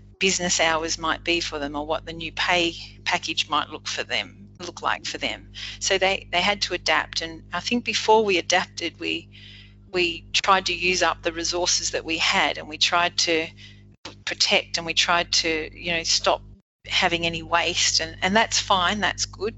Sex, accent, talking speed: female, Australian, 195 wpm